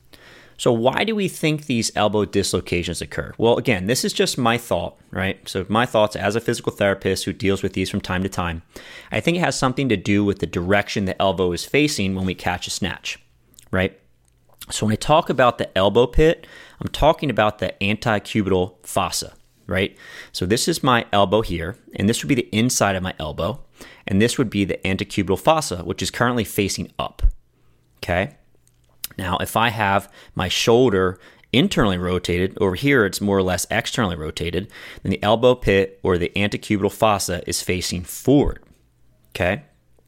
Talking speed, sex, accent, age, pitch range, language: 185 wpm, male, American, 30-49, 95-115 Hz, English